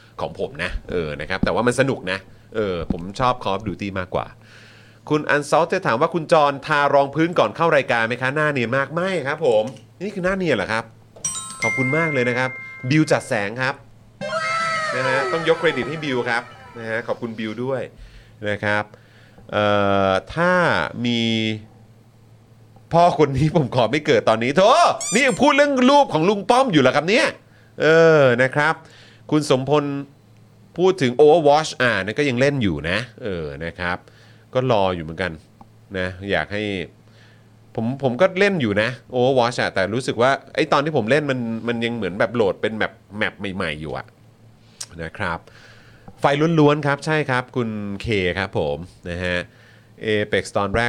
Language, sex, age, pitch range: Thai, male, 30-49, 110-145 Hz